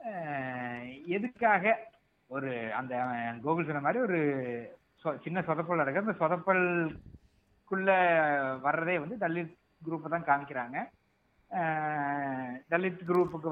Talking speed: 100 wpm